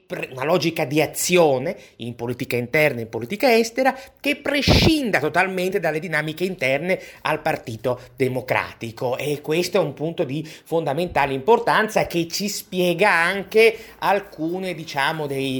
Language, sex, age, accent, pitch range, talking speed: Italian, male, 30-49, native, 135-175 Hz, 130 wpm